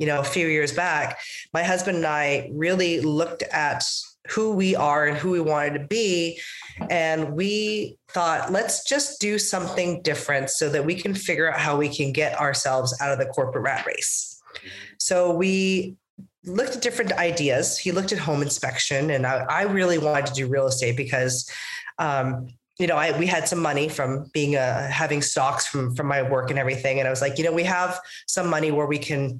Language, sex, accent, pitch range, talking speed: English, female, American, 140-180 Hz, 205 wpm